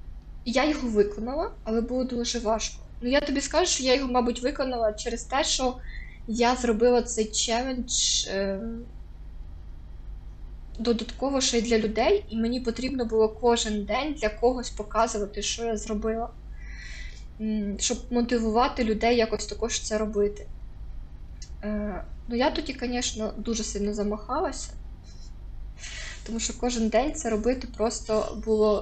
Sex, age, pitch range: female, 20-39, 210-245 Hz